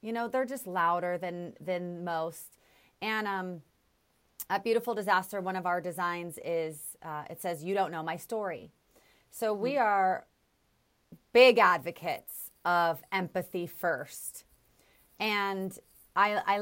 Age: 30-49